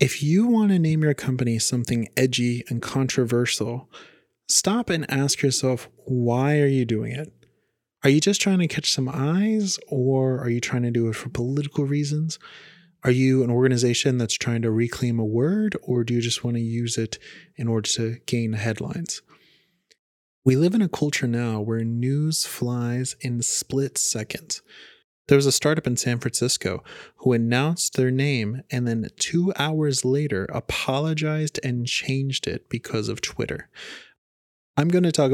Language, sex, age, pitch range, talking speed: English, male, 30-49, 120-150 Hz, 170 wpm